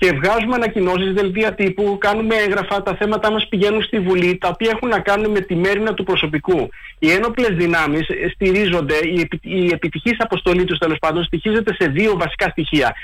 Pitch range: 175-215 Hz